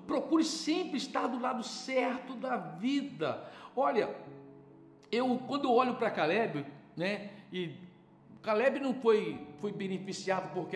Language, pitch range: Portuguese, 175-260 Hz